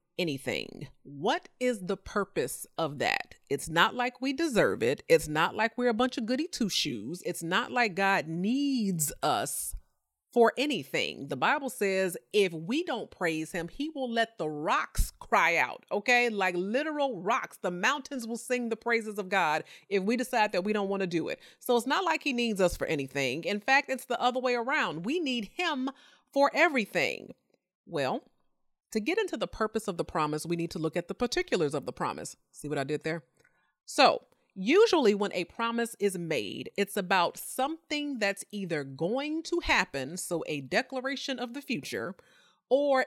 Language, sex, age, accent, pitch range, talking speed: English, female, 30-49, American, 185-265 Hz, 190 wpm